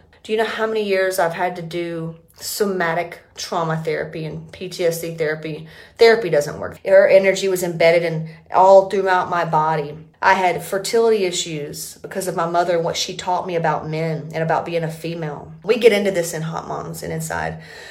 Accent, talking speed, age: American, 190 wpm, 30-49